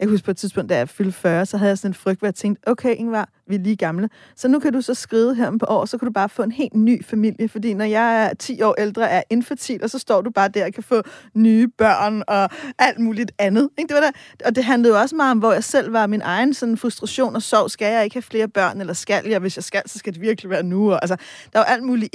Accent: native